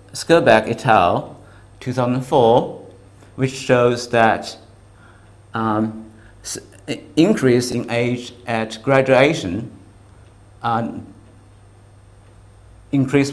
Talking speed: 70 wpm